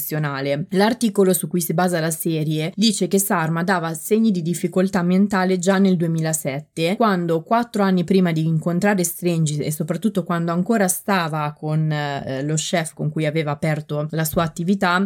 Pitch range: 160-195 Hz